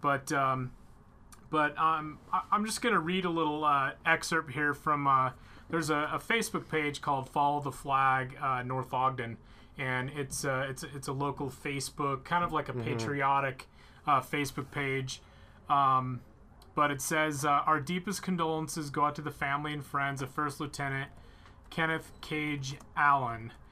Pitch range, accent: 130-155 Hz, American